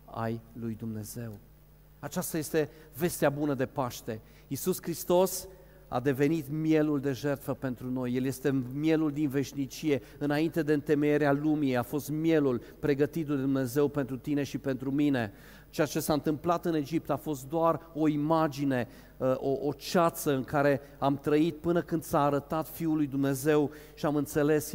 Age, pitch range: 40-59, 140-165 Hz